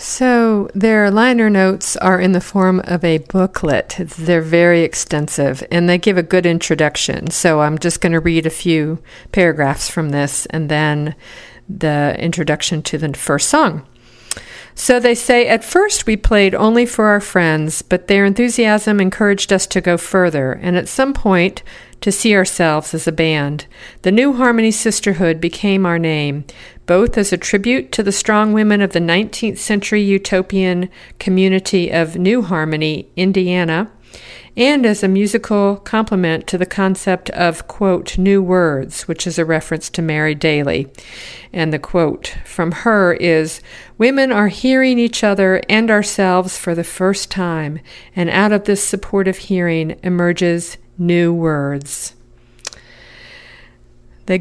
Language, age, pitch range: English, 50-69, 165-210 Hz